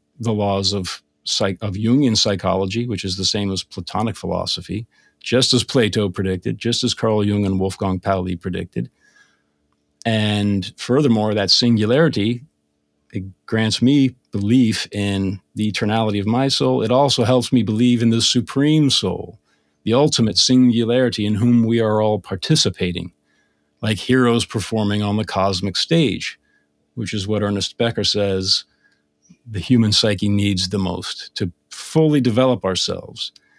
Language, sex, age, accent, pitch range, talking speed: English, male, 40-59, American, 95-120 Hz, 145 wpm